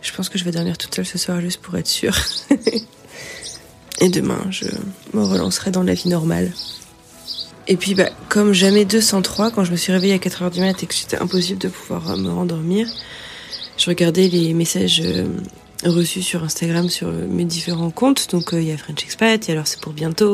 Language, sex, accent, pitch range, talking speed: English, female, French, 160-195 Hz, 205 wpm